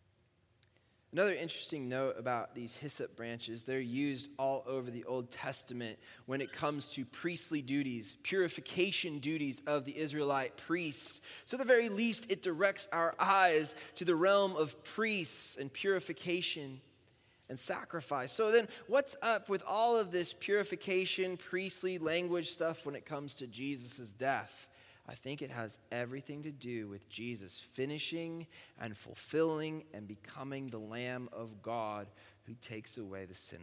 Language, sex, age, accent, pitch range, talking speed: English, male, 20-39, American, 120-165 Hz, 150 wpm